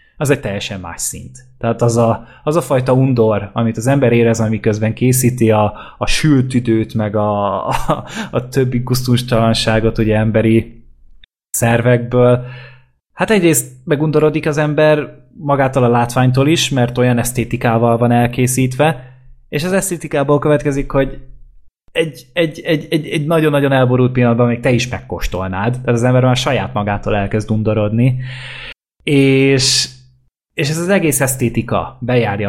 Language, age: Hungarian, 20-39